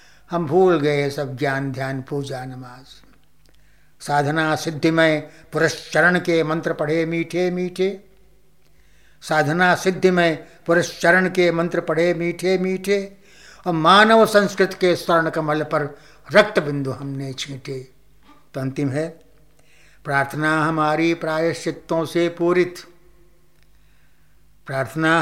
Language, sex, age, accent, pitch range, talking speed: Hindi, male, 60-79, native, 140-175 Hz, 110 wpm